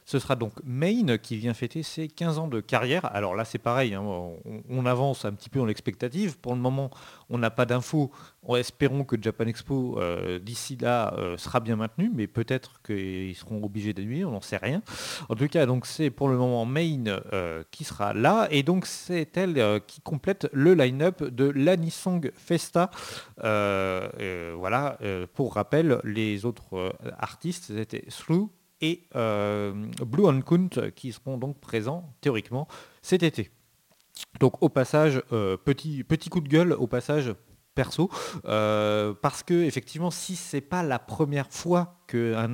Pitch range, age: 110-155 Hz, 40-59